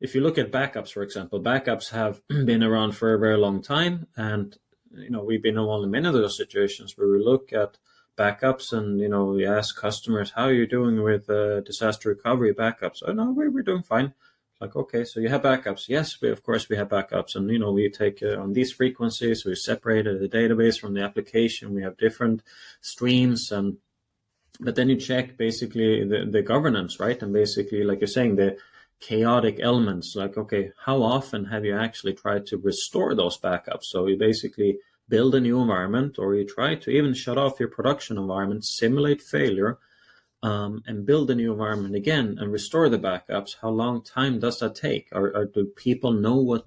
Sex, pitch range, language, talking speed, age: male, 105-125 Hz, English, 200 wpm, 20-39